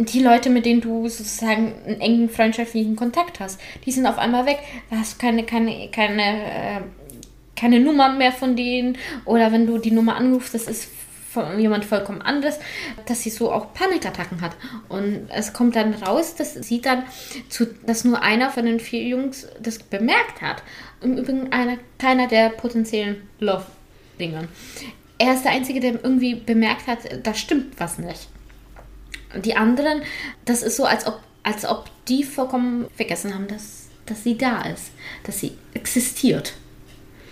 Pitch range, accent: 210-255 Hz, German